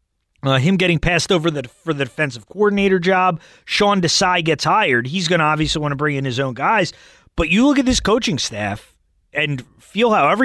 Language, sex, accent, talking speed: English, male, American, 200 wpm